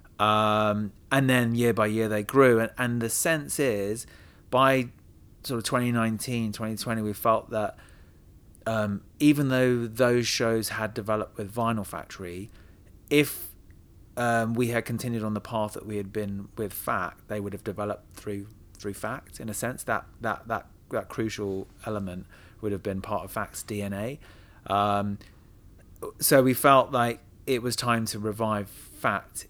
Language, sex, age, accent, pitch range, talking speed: English, male, 30-49, British, 95-115 Hz, 160 wpm